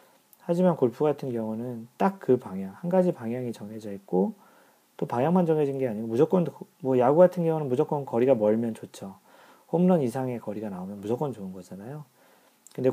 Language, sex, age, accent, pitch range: Korean, male, 40-59, native, 105-150 Hz